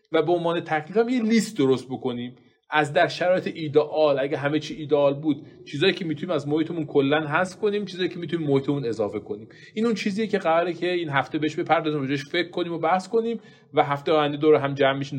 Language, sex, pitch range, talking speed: Persian, male, 115-160 Hz, 215 wpm